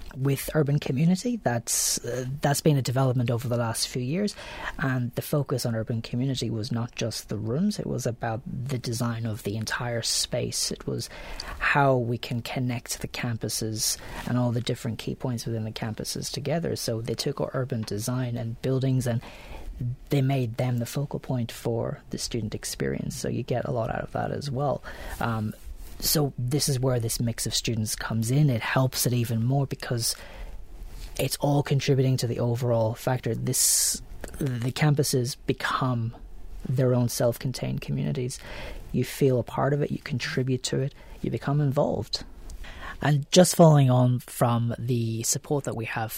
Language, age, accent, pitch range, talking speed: English, 30-49, Irish, 115-135 Hz, 175 wpm